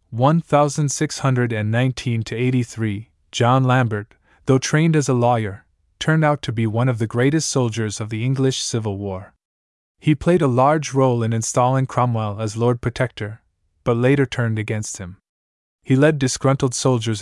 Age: 20-39